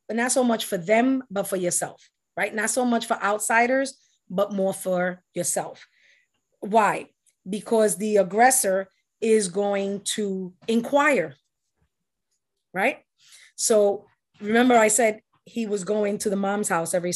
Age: 30-49